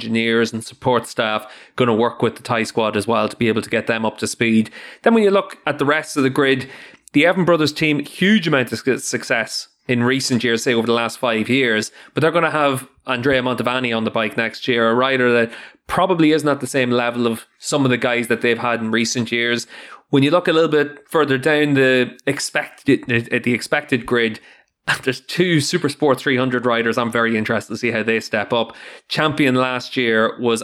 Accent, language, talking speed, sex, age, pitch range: Irish, English, 225 wpm, male, 20-39, 110-130 Hz